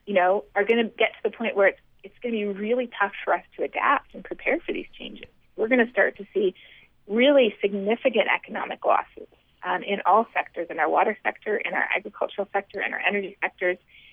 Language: English